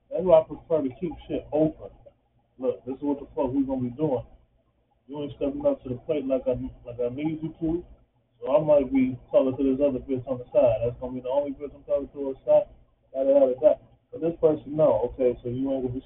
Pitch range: 130-170 Hz